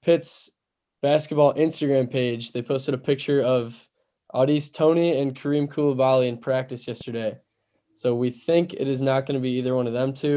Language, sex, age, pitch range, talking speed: English, male, 10-29, 125-150 Hz, 180 wpm